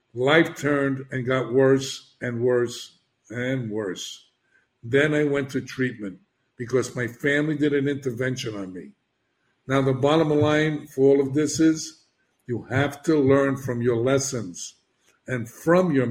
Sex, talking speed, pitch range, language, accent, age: male, 155 wpm, 120-140 Hz, English, American, 60-79